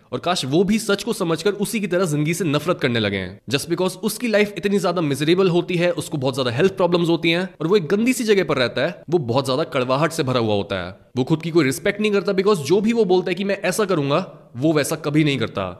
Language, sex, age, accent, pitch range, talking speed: Hindi, male, 20-39, native, 155-200 Hz, 260 wpm